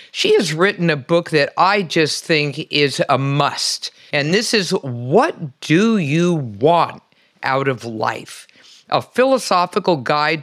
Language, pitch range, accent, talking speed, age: English, 140-175 Hz, American, 145 wpm, 50-69